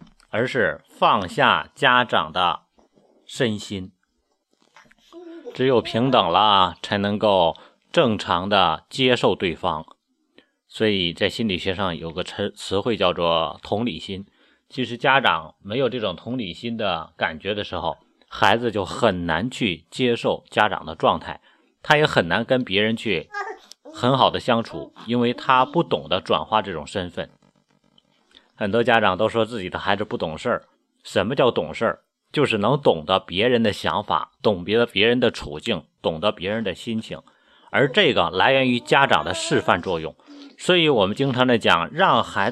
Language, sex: Chinese, male